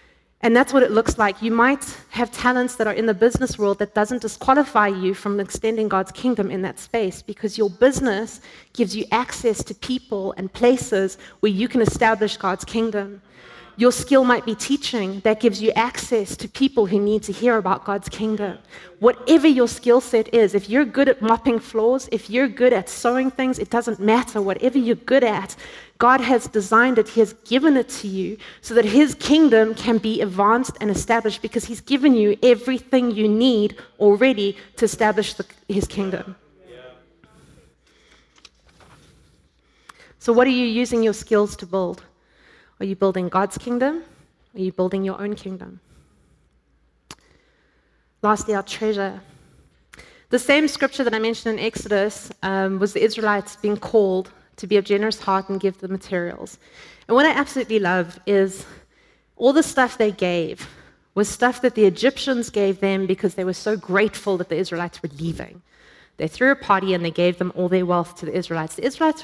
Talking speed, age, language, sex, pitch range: 180 wpm, 30-49, English, female, 195-245 Hz